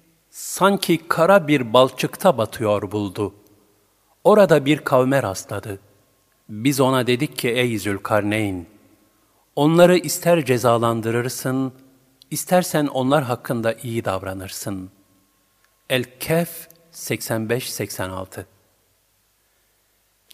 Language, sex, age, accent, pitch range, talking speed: Turkish, male, 50-69, native, 105-145 Hz, 75 wpm